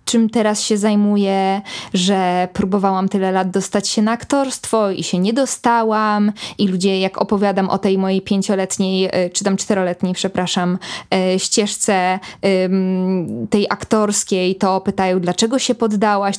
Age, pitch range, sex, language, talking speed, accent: 20-39, 195-230 Hz, female, Polish, 130 wpm, native